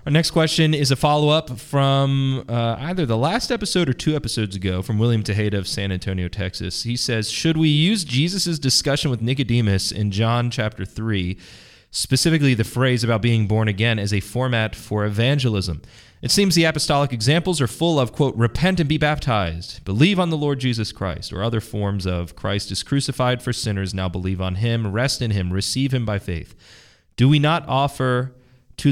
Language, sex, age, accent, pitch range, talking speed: English, male, 30-49, American, 100-130 Hz, 190 wpm